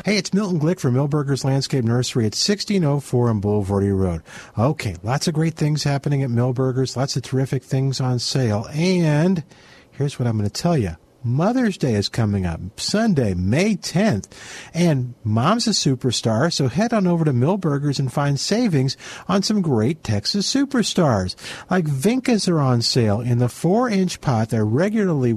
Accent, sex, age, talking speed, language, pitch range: American, male, 50-69, 170 wpm, English, 120-175 Hz